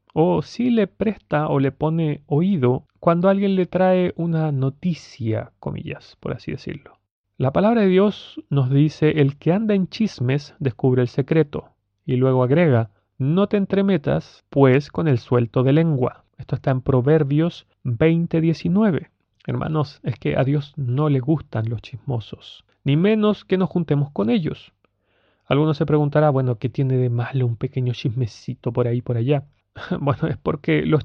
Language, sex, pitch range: Spanish, male, 130-170 Hz